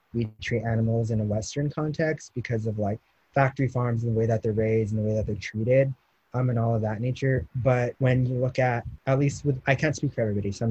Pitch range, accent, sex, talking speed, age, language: 110-130 Hz, American, male, 250 wpm, 20-39, English